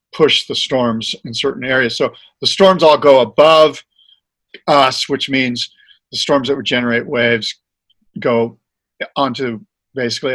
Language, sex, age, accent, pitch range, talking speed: English, male, 50-69, American, 120-145 Hz, 140 wpm